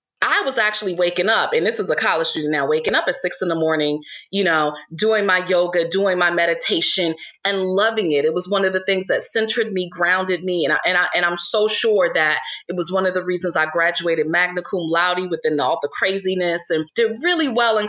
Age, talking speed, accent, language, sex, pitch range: 30-49, 235 wpm, American, English, female, 185-300 Hz